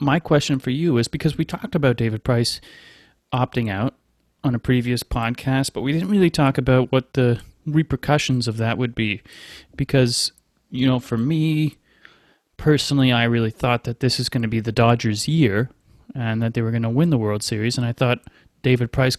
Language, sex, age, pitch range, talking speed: English, male, 30-49, 120-145 Hz, 195 wpm